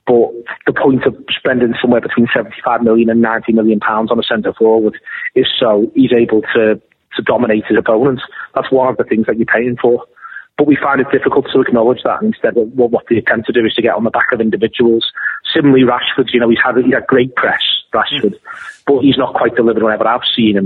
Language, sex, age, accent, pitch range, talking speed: English, male, 30-49, British, 110-125 Hz, 230 wpm